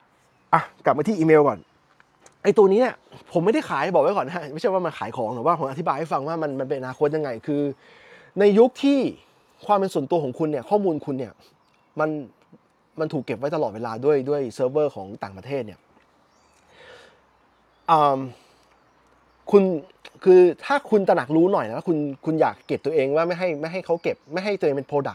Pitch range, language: 140-190 Hz, Thai